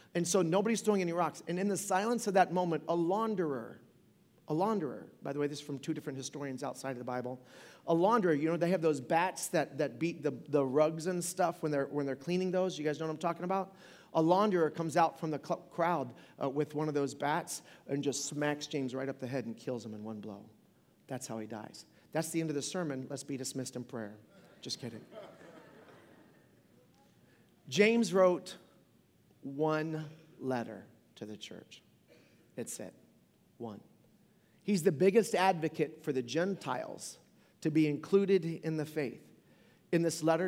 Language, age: English, 40-59